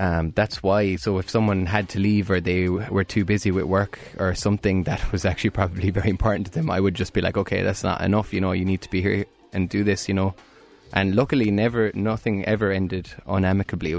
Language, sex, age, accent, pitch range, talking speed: English, male, 20-39, Irish, 90-105 Hz, 235 wpm